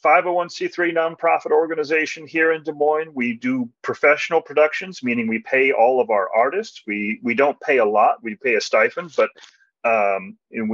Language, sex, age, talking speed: English, male, 40-59, 170 wpm